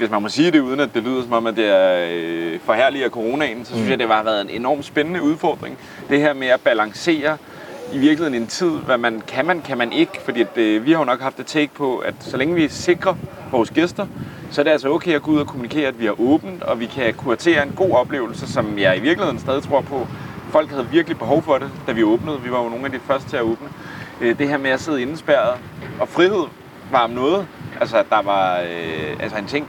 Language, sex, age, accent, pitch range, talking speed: Danish, male, 30-49, native, 120-170 Hz, 255 wpm